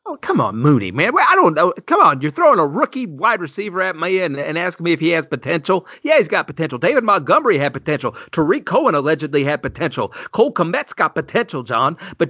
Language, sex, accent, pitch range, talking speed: English, male, American, 135-185 Hz, 220 wpm